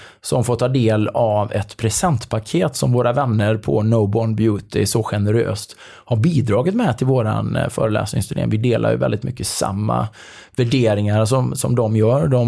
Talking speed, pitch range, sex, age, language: 160 wpm, 105-120 Hz, male, 20-39, English